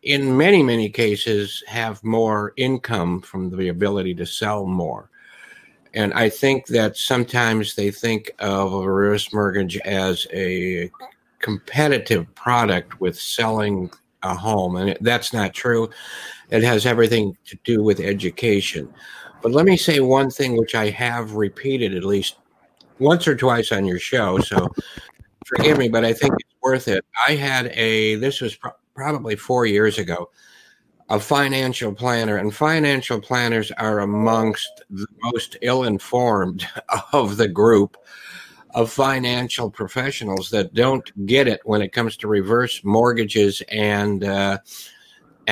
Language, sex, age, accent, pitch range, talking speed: English, male, 60-79, American, 100-125 Hz, 140 wpm